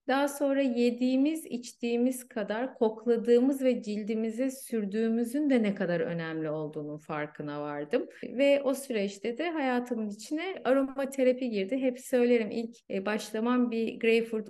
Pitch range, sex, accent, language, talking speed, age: 195-255 Hz, female, native, Turkish, 125 wpm, 30-49